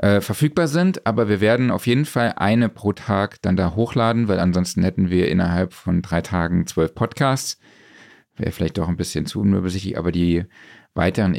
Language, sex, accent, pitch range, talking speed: German, male, German, 95-110 Hz, 185 wpm